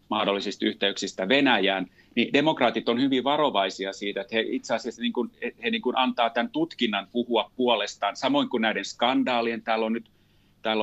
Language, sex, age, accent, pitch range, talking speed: Finnish, male, 30-49, native, 105-125 Hz, 170 wpm